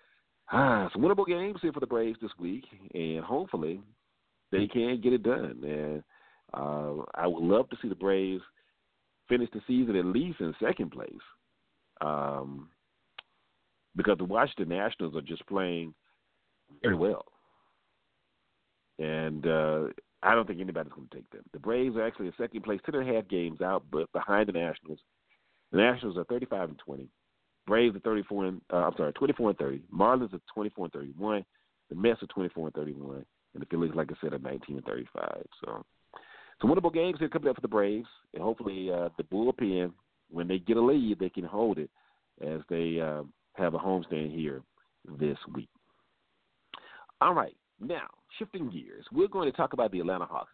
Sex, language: male, English